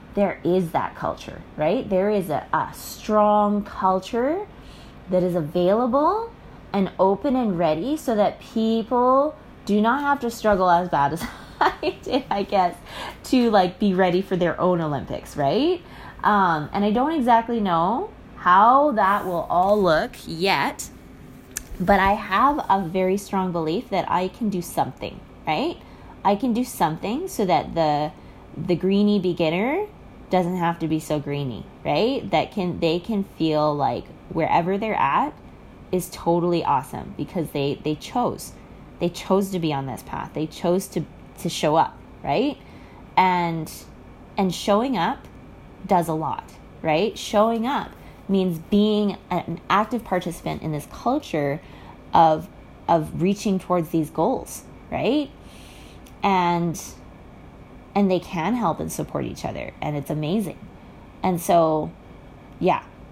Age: 20-39